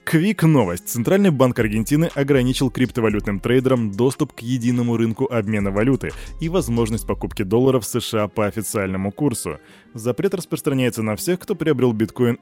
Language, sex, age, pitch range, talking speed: Russian, male, 20-39, 105-130 Hz, 140 wpm